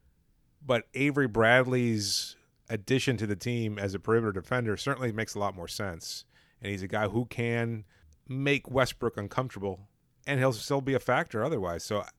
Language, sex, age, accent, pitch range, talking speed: English, male, 30-49, American, 100-125 Hz, 165 wpm